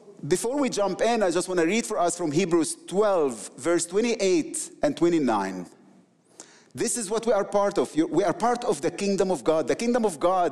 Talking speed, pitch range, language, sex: 210 wpm, 175-245 Hz, English, male